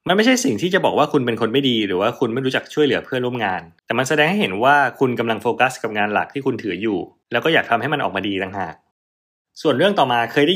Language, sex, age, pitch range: Thai, male, 20-39, 110-150 Hz